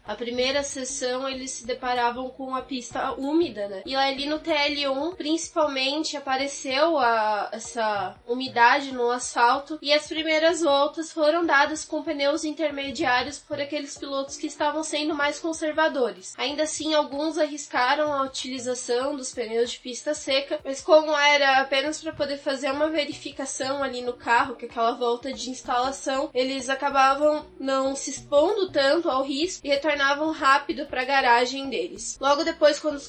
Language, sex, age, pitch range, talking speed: Portuguese, female, 10-29, 250-300 Hz, 155 wpm